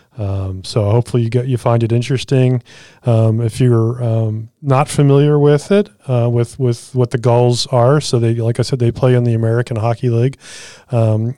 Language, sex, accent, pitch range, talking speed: English, male, American, 110-125 Hz, 195 wpm